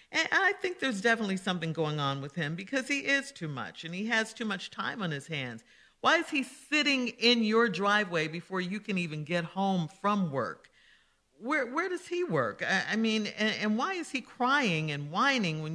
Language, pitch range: English, 155-220 Hz